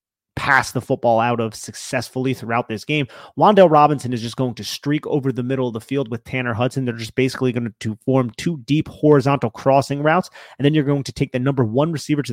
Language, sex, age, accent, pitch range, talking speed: English, male, 30-49, American, 130-155 Hz, 230 wpm